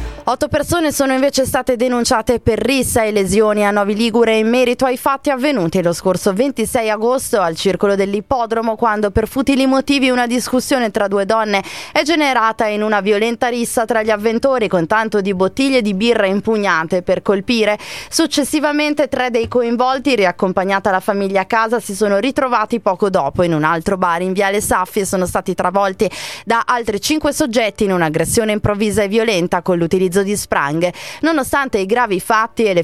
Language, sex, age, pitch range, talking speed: Italian, female, 20-39, 190-245 Hz, 180 wpm